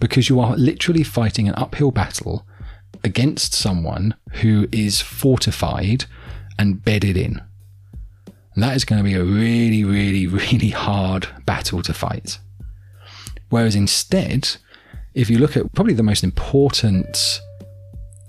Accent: British